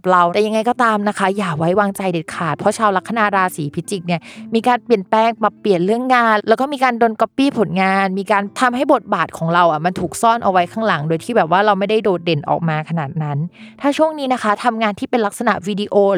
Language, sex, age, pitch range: Thai, female, 20-39, 175-225 Hz